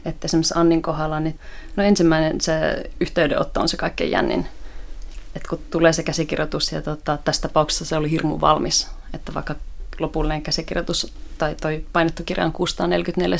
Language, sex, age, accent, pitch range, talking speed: Finnish, female, 30-49, native, 145-165 Hz, 160 wpm